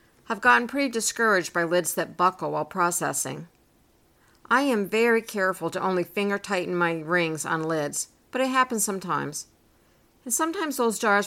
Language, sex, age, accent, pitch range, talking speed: English, female, 50-69, American, 170-230 Hz, 160 wpm